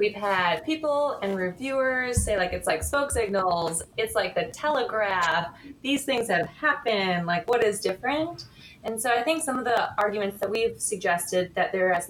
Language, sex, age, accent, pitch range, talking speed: English, female, 20-39, American, 175-230 Hz, 185 wpm